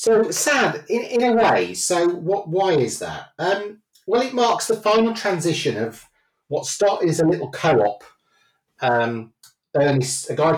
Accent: British